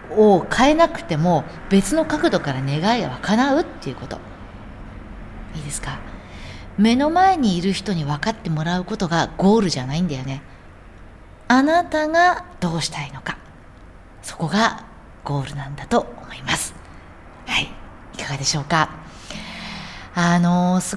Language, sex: Japanese, female